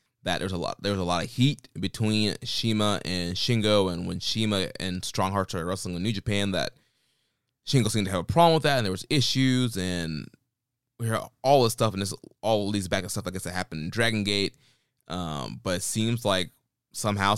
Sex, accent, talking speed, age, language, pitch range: male, American, 225 wpm, 20-39, English, 90-110 Hz